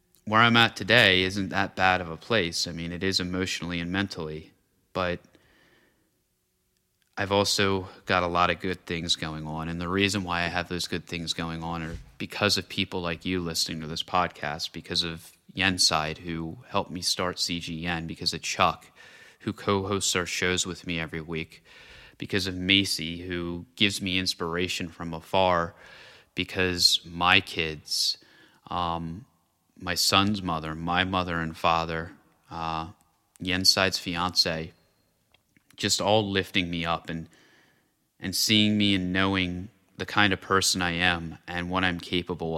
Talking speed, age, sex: 160 wpm, 30-49, male